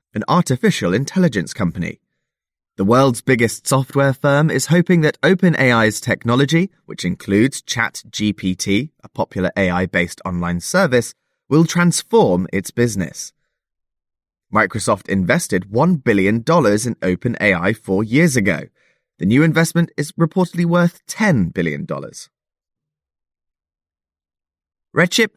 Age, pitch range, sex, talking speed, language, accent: 20-39, 95-160 Hz, male, 105 wpm, English, British